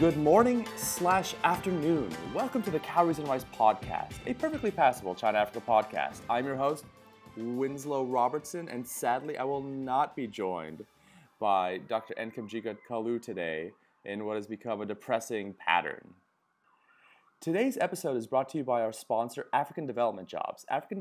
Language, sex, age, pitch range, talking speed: English, male, 30-49, 115-150 Hz, 150 wpm